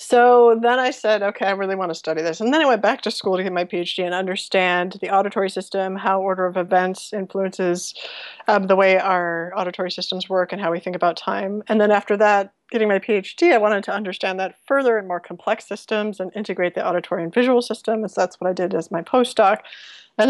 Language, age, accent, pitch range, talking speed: English, 30-49, American, 180-220 Hz, 235 wpm